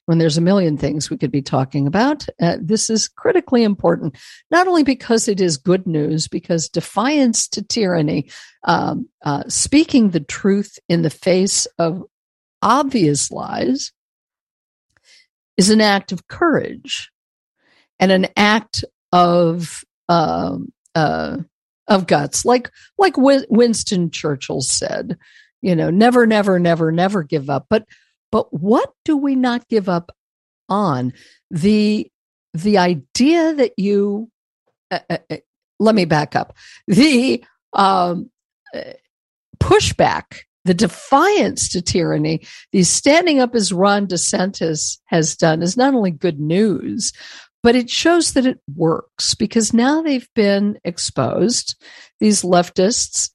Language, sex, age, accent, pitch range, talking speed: English, female, 50-69, American, 170-240 Hz, 130 wpm